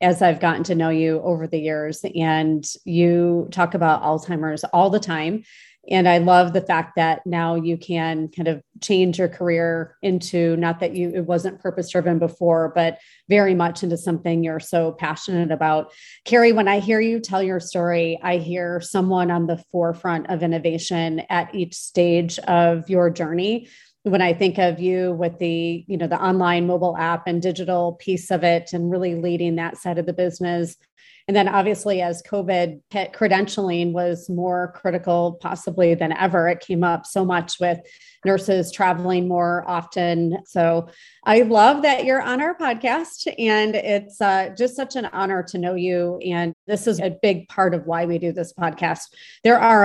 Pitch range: 170-190 Hz